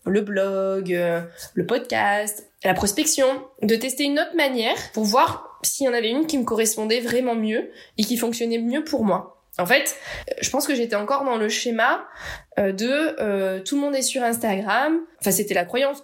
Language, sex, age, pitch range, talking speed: French, female, 20-39, 205-265 Hz, 190 wpm